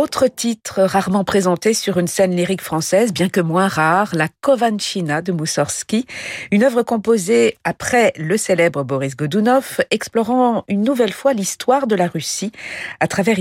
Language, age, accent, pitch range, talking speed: French, 50-69, French, 150-210 Hz, 160 wpm